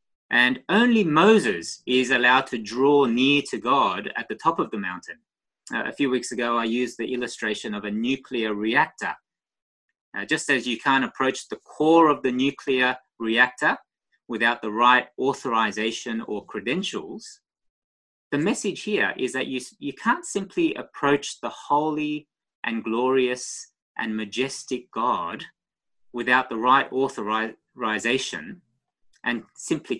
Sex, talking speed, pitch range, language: male, 140 wpm, 115-150 Hz, English